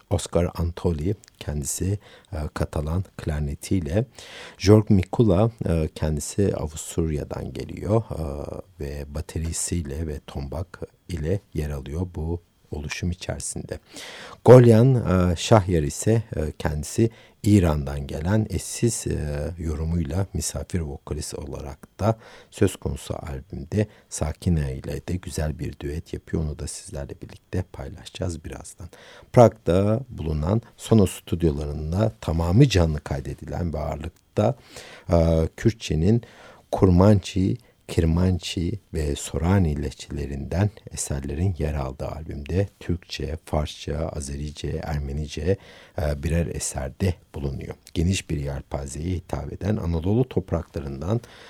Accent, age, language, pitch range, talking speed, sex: native, 60-79, Turkish, 75-100 Hz, 105 wpm, male